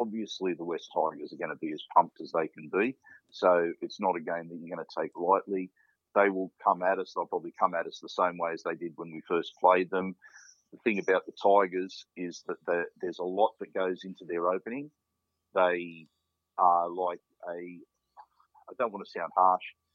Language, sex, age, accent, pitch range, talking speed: English, male, 50-69, Australian, 90-110 Hz, 215 wpm